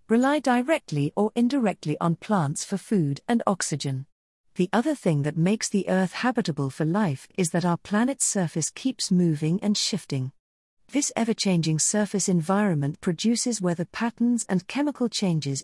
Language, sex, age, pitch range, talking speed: English, female, 50-69, 160-215 Hz, 150 wpm